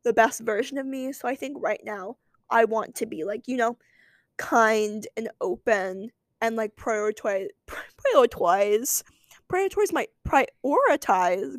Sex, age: female, 10-29